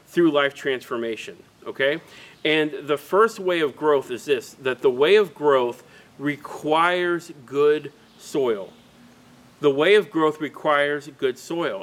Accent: American